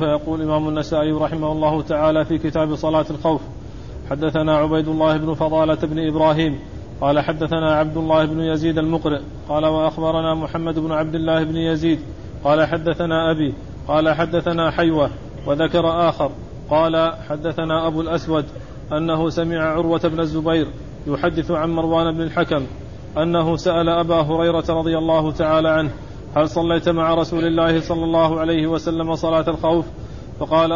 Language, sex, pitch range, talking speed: Arabic, male, 155-170 Hz, 145 wpm